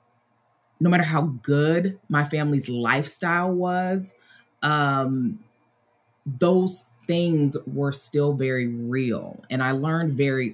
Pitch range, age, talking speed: 120-160 Hz, 20-39, 110 wpm